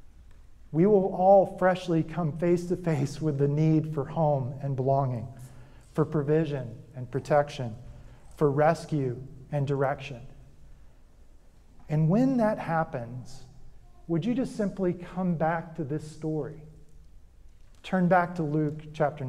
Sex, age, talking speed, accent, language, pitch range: male, 40-59, 130 wpm, American, English, 135-175 Hz